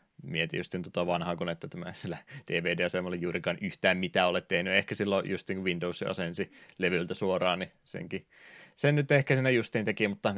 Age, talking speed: 20-39, 180 wpm